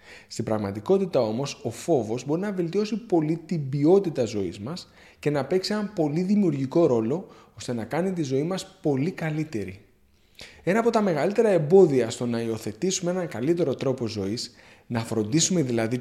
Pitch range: 115-185 Hz